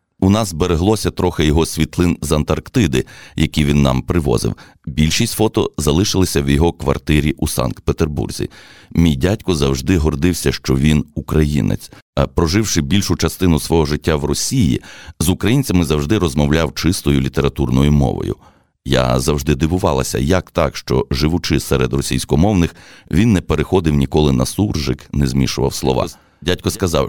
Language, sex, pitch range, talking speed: Ukrainian, male, 70-90 Hz, 135 wpm